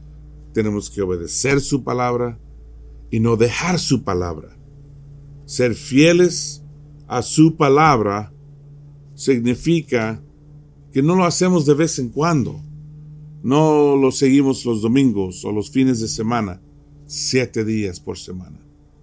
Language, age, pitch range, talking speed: English, 50-69, 110-150 Hz, 120 wpm